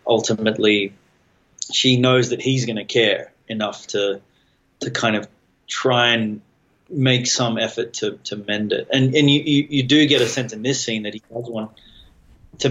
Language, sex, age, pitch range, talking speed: English, male, 30-49, 110-130 Hz, 180 wpm